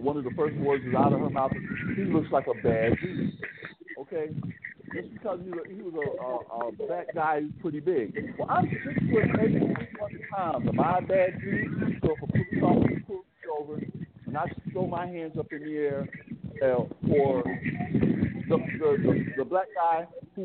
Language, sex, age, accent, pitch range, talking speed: English, male, 50-69, American, 150-210 Hz, 190 wpm